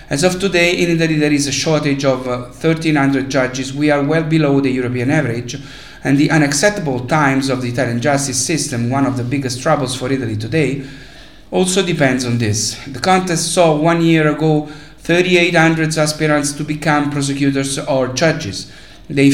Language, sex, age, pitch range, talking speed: English, male, 50-69, 135-160 Hz, 170 wpm